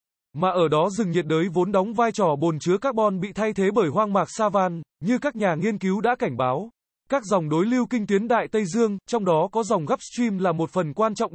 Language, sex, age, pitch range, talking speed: Vietnamese, male, 20-39, 175-225 Hz, 255 wpm